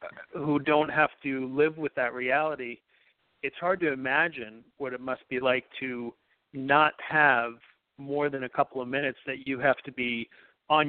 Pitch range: 125-150 Hz